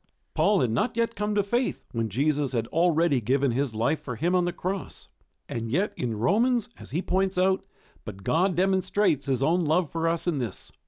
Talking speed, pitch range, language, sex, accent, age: 205 wpm, 125-185 Hz, English, male, American, 50-69